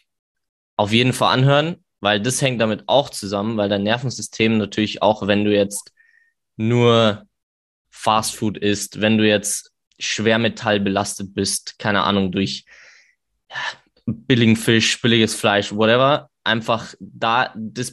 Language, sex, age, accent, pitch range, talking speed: German, male, 20-39, German, 105-125 Hz, 135 wpm